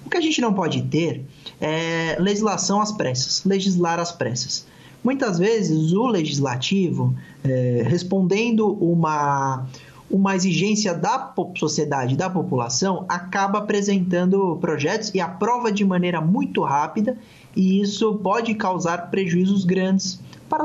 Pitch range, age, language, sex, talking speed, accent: 155-195 Hz, 20-39, Portuguese, male, 125 wpm, Brazilian